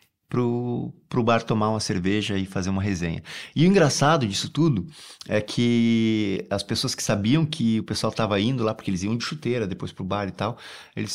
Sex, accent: male, Brazilian